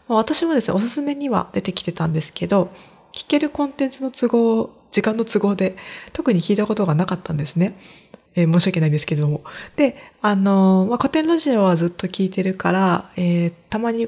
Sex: female